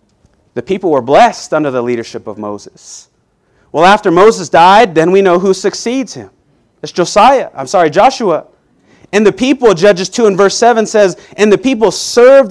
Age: 30-49